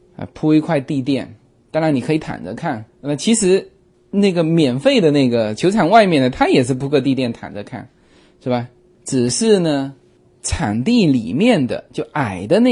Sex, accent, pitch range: male, native, 120-170 Hz